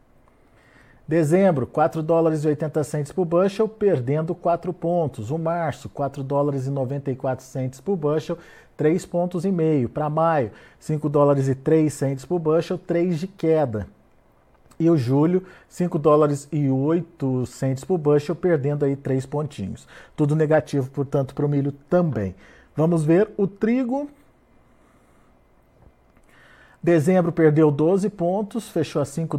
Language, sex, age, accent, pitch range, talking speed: Portuguese, male, 50-69, Brazilian, 135-170 Hz, 140 wpm